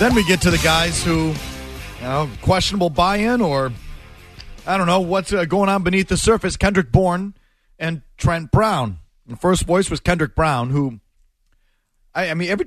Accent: American